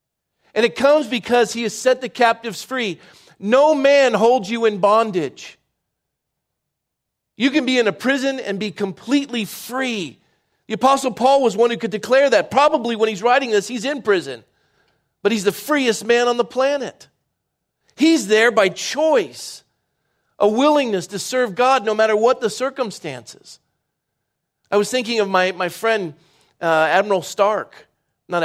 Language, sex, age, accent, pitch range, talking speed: English, male, 40-59, American, 155-225 Hz, 160 wpm